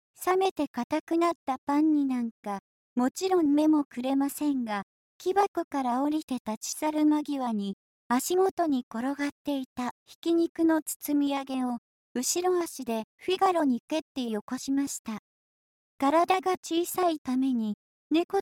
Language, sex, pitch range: Japanese, male, 250-325 Hz